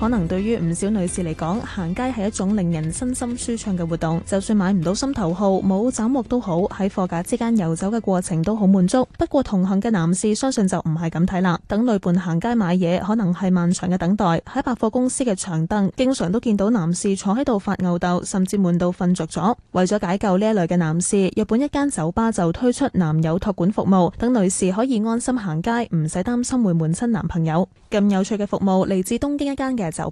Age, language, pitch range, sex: 10-29, Chinese, 175-230 Hz, female